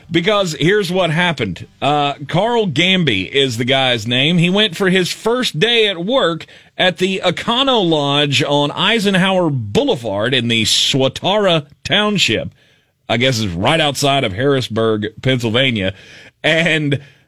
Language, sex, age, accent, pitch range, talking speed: English, male, 30-49, American, 140-195 Hz, 135 wpm